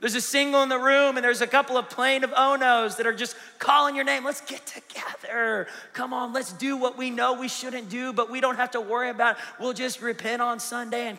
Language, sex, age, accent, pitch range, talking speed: English, male, 30-49, American, 205-255 Hz, 260 wpm